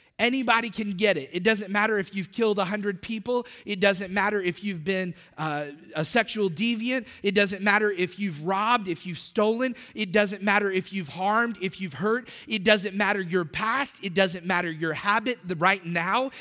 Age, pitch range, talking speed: 30-49, 180-225 Hz, 190 wpm